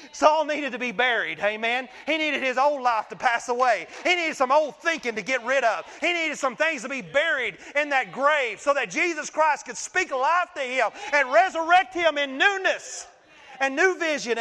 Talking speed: 210 wpm